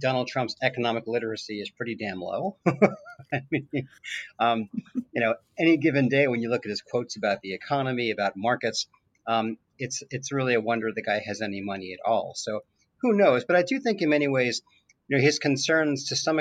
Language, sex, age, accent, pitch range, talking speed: English, male, 40-59, American, 115-145 Hz, 205 wpm